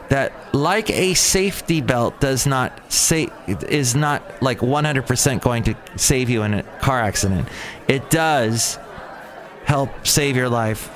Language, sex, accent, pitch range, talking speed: English, male, American, 110-145 Hz, 140 wpm